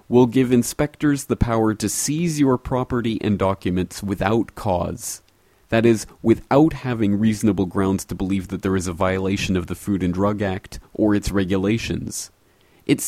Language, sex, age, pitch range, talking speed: English, male, 30-49, 90-115 Hz, 165 wpm